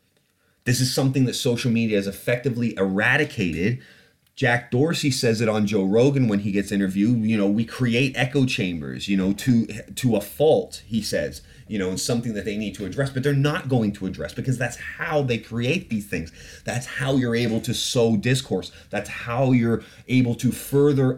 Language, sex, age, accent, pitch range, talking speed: English, male, 30-49, American, 100-135 Hz, 195 wpm